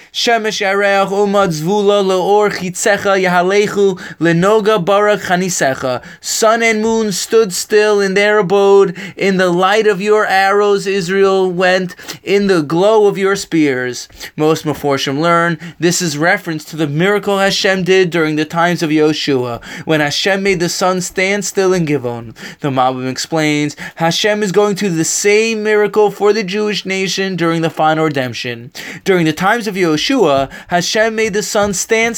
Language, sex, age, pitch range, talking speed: English, male, 20-39, 165-205 Hz, 145 wpm